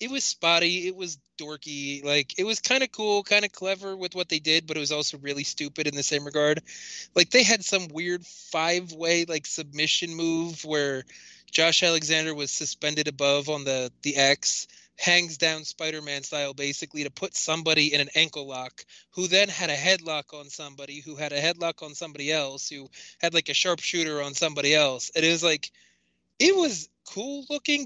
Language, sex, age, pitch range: English, male, 20-39, 140-170 Hz